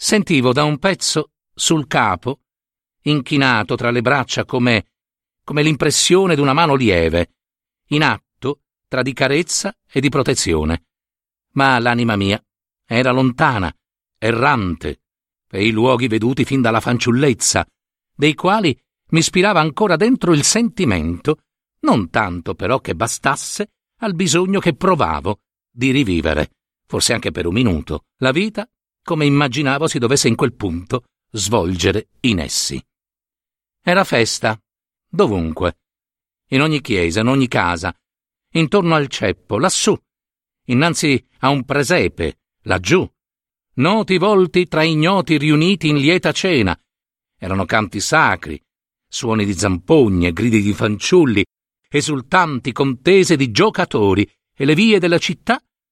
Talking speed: 125 wpm